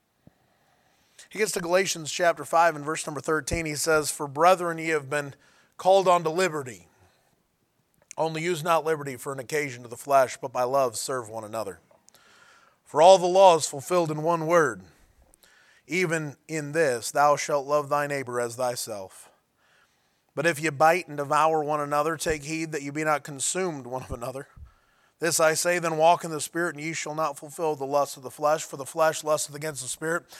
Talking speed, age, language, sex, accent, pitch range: 195 wpm, 20-39, English, male, American, 145-175 Hz